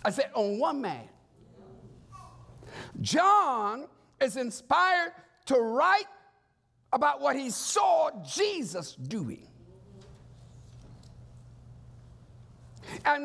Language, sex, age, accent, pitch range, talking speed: English, male, 60-79, American, 195-305 Hz, 75 wpm